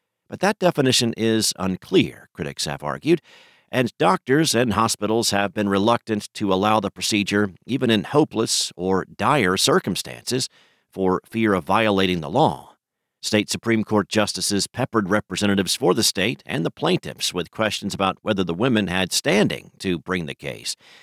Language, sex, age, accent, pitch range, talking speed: English, male, 50-69, American, 90-110 Hz, 155 wpm